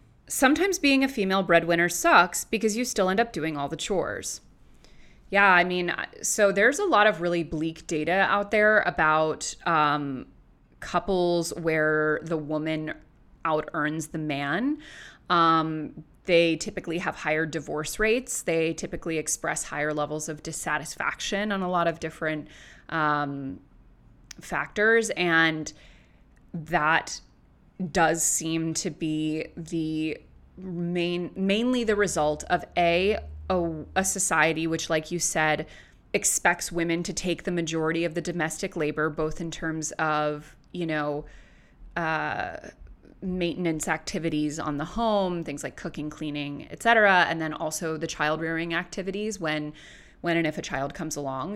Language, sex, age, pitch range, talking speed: English, female, 20-39, 155-180 Hz, 140 wpm